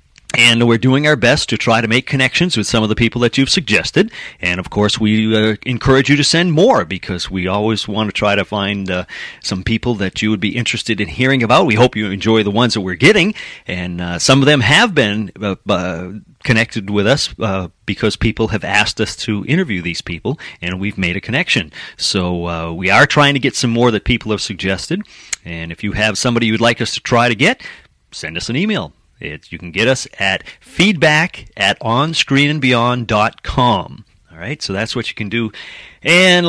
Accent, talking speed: American, 210 wpm